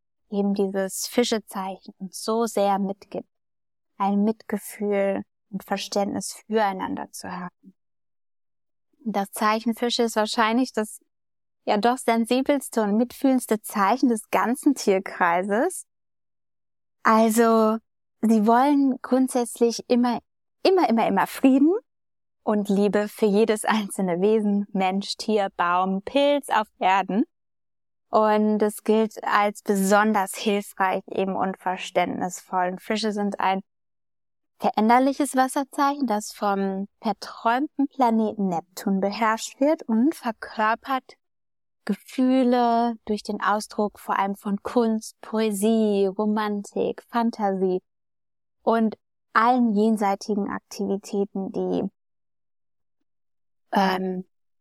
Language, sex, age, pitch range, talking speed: German, female, 20-39, 195-235 Hz, 100 wpm